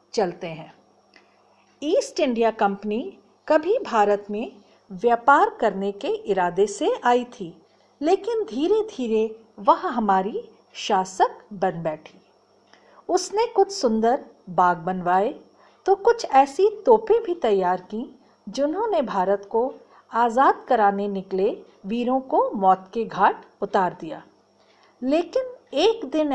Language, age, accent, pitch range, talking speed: Hindi, 50-69, native, 200-335 Hz, 115 wpm